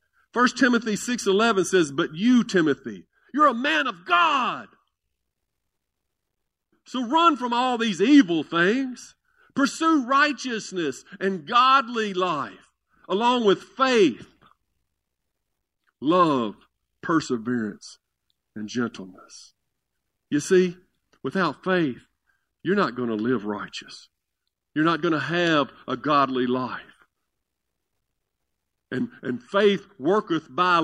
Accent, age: American, 50-69